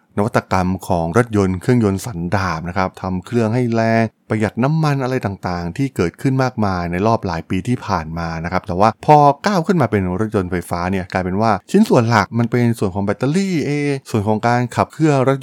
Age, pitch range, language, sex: 20-39, 95-130 Hz, Thai, male